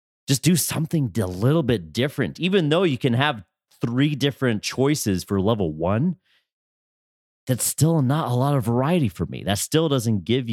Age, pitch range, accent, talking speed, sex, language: 30-49, 105-145 Hz, American, 175 wpm, male, English